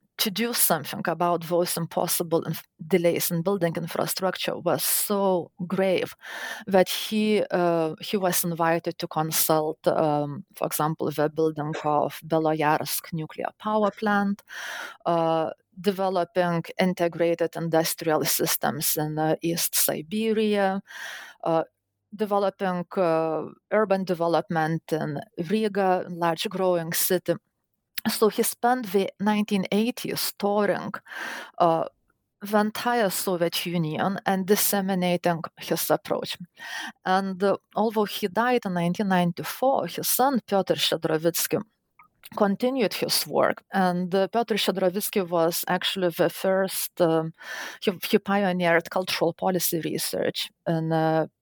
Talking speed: 115 wpm